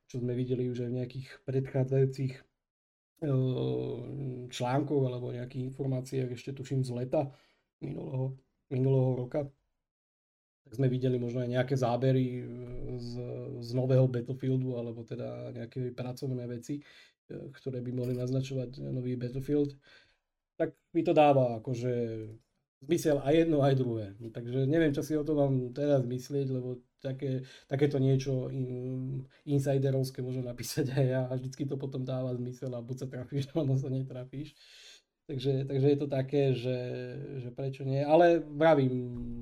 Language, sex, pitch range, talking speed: Slovak, male, 125-140 Hz, 145 wpm